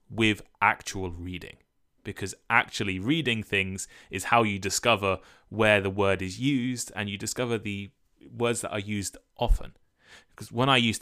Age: 20-39